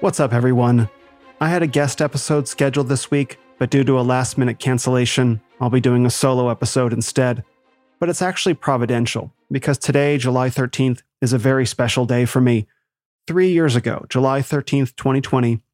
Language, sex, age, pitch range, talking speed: English, male, 30-49, 125-145 Hz, 170 wpm